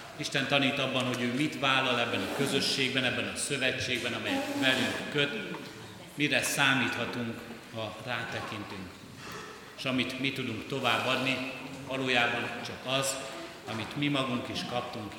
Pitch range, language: 115-135 Hz, Hungarian